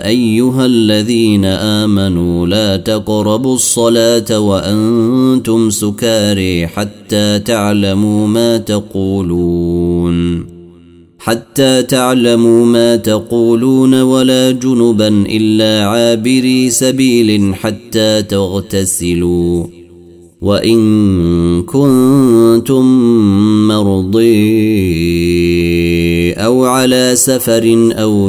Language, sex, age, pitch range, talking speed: Arabic, male, 30-49, 95-115 Hz, 65 wpm